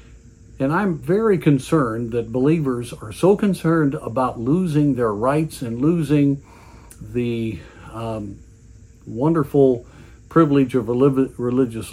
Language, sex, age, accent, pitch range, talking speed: English, male, 50-69, American, 115-150 Hz, 105 wpm